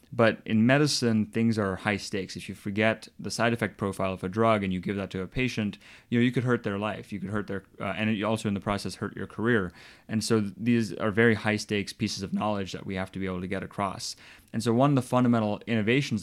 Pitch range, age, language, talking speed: 95-115 Hz, 20-39, English, 260 wpm